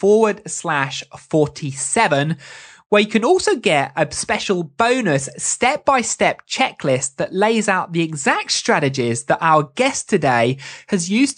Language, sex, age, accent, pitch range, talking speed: English, male, 20-39, British, 145-210 Hz, 140 wpm